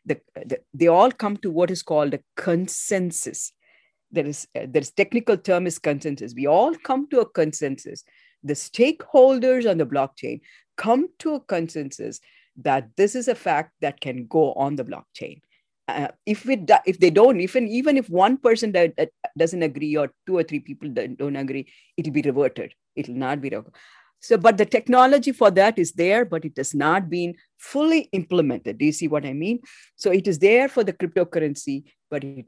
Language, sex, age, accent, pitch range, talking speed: English, female, 40-59, Indian, 145-220 Hz, 195 wpm